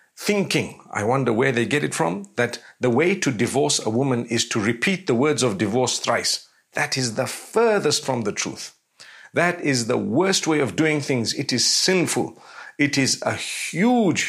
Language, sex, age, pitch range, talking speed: English, male, 50-69, 120-150 Hz, 190 wpm